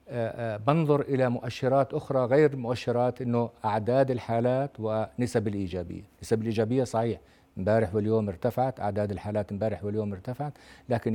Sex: male